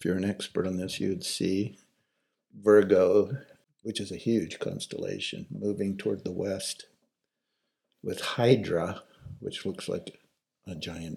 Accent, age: American, 60-79